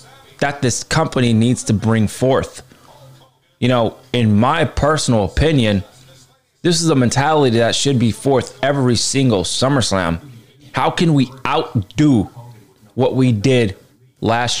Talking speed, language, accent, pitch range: 130 wpm, English, American, 110-135 Hz